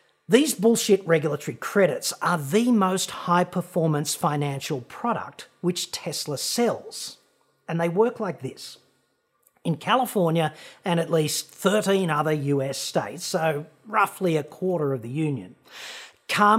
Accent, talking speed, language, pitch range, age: Australian, 130 wpm, English, 150-210 Hz, 40-59